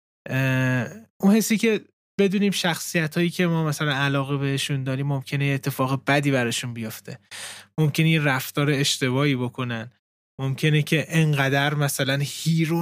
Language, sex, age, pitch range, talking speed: Persian, male, 20-39, 140-185 Hz, 115 wpm